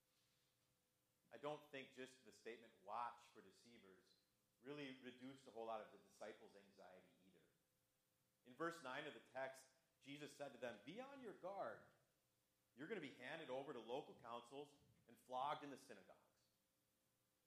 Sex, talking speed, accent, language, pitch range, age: male, 160 wpm, American, English, 105-135 Hz, 30-49